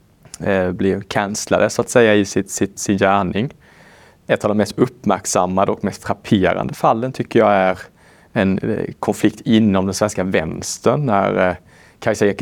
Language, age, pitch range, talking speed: Swedish, 30-49, 95-110 Hz, 145 wpm